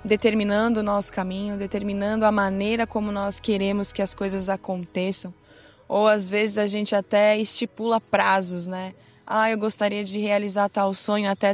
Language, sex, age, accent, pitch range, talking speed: Portuguese, female, 20-39, Brazilian, 195-220 Hz, 160 wpm